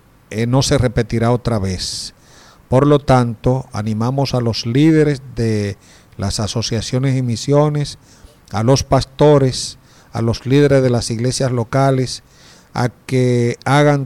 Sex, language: male, English